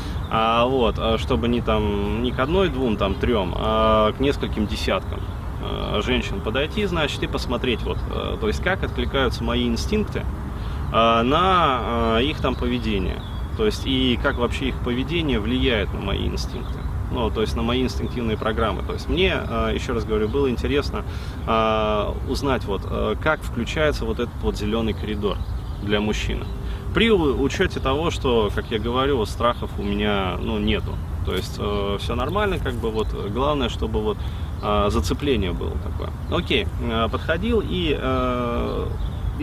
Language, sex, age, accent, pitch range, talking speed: Russian, male, 20-39, native, 90-115 Hz, 145 wpm